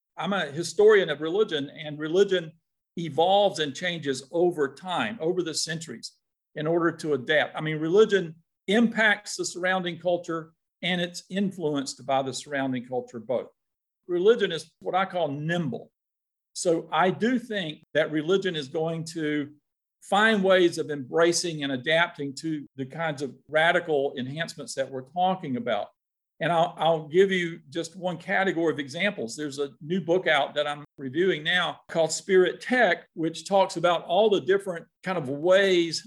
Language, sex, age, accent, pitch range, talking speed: English, male, 50-69, American, 150-185 Hz, 160 wpm